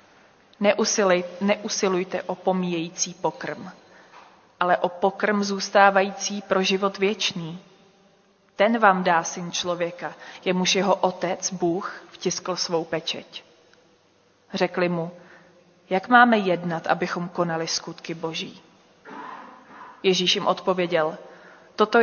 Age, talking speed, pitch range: 30-49, 100 wpm, 175-195 Hz